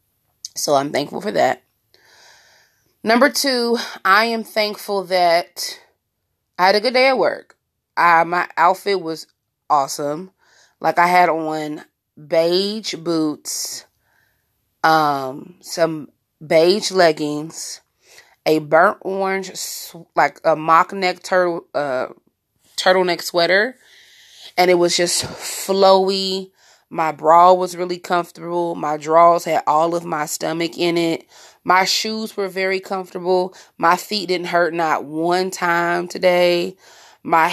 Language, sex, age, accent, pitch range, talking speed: English, female, 20-39, American, 155-185 Hz, 125 wpm